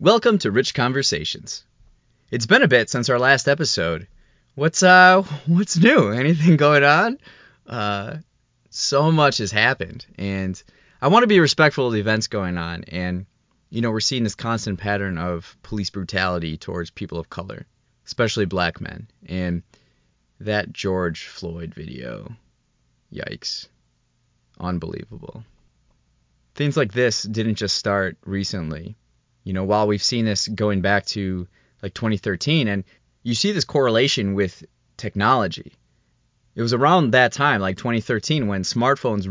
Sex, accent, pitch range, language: male, American, 95-125 Hz, English